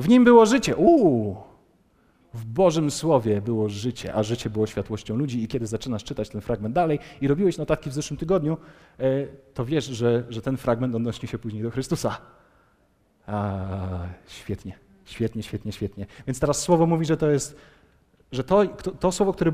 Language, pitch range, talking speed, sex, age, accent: Polish, 110-155 Hz, 170 wpm, male, 40-59, native